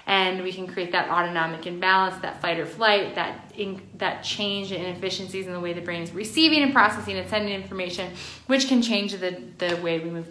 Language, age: English, 20-39